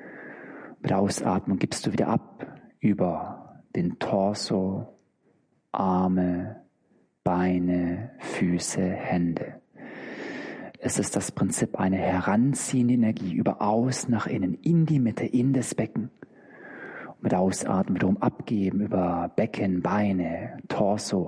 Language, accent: German, German